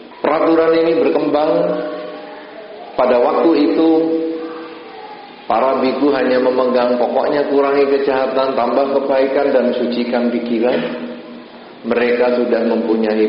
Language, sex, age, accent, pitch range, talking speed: Indonesian, male, 50-69, native, 120-155 Hz, 95 wpm